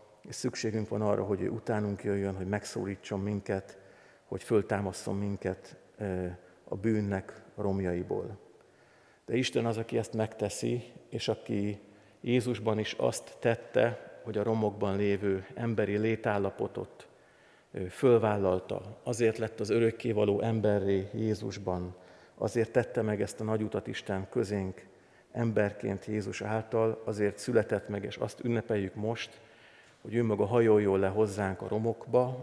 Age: 50-69